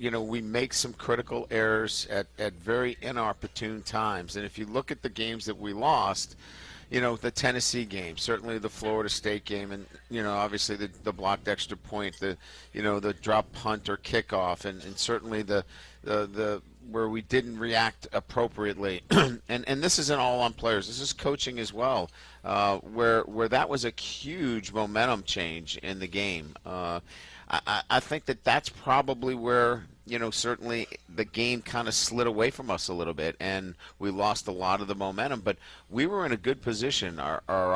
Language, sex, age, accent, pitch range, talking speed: English, male, 50-69, American, 100-125 Hz, 195 wpm